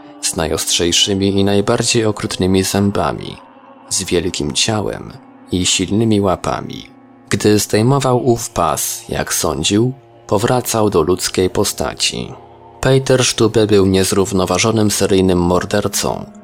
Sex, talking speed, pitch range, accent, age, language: male, 100 wpm, 100-115 Hz, native, 20-39, Polish